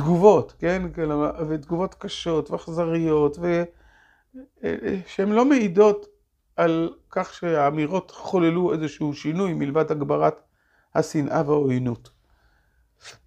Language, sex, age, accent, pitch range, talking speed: Hebrew, male, 40-59, native, 150-205 Hz, 85 wpm